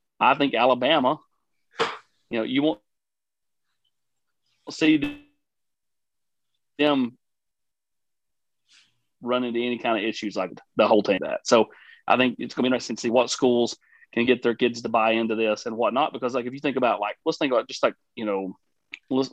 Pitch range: 110-130 Hz